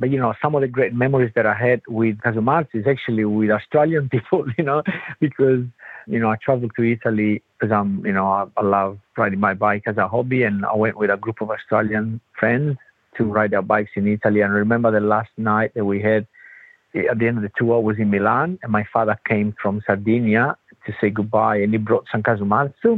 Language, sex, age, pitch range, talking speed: Italian, male, 50-69, 110-135 Hz, 230 wpm